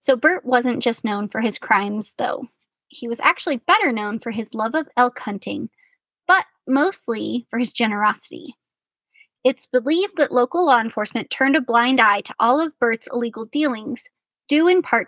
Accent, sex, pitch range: American, female, 230-295 Hz